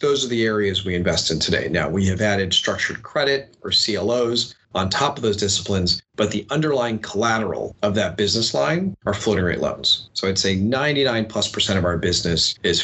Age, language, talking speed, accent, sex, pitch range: 30-49, English, 200 wpm, American, male, 95-115 Hz